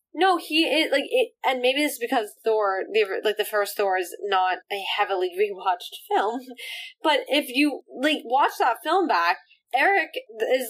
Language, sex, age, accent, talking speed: English, female, 10-29, American, 185 wpm